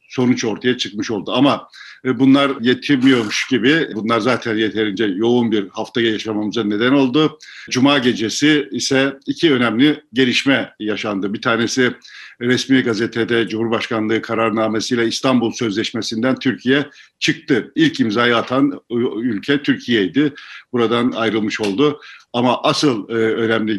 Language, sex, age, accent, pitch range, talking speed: Turkish, male, 50-69, native, 110-130 Hz, 115 wpm